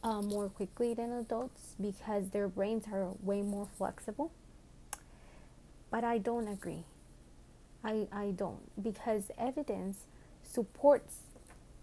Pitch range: 200-235 Hz